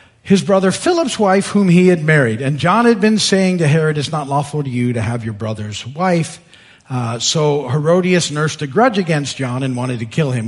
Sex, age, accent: male, 50-69, American